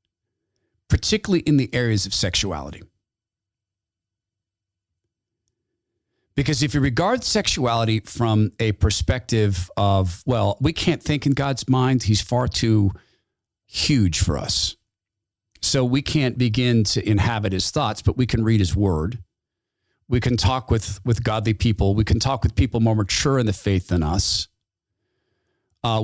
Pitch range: 100-125 Hz